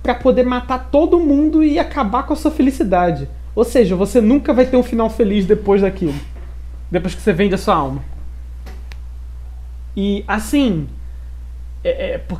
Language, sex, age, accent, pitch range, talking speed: Portuguese, male, 20-39, Brazilian, 150-215 Hz, 155 wpm